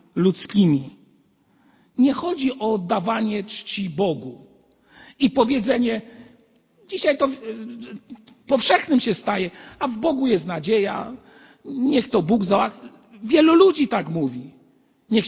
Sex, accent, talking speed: male, native, 110 wpm